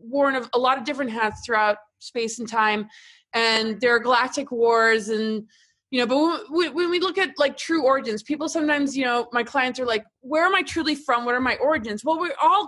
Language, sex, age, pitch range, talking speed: English, female, 20-39, 225-290 Hz, 220 wpm